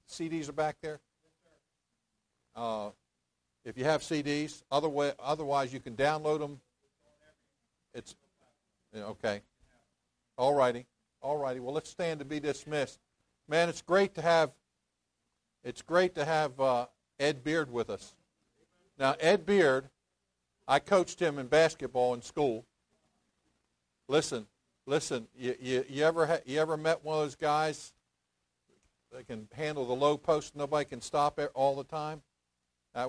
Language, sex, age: English, male, 50-69